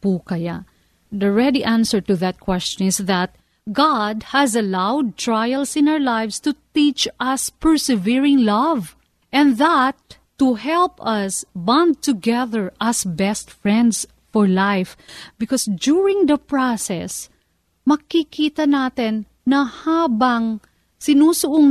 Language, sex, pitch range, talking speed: Filipino, female, 210-280 Hz, 115 wpm